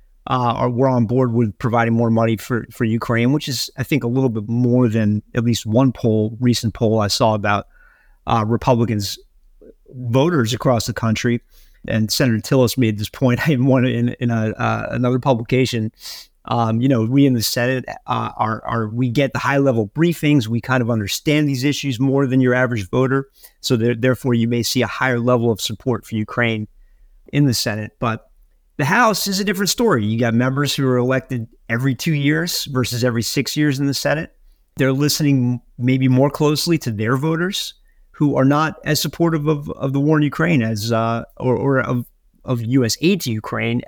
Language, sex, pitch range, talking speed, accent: English, male, 115-140 Hz, 195 wpm, American